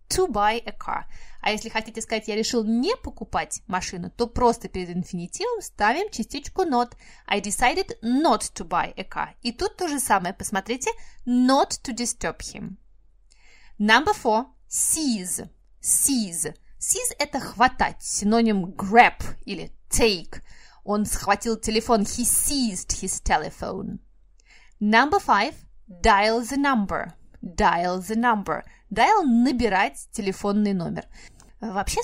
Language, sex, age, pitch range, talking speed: Russian, female, 20-39, 200-250 Hz, 130 wpm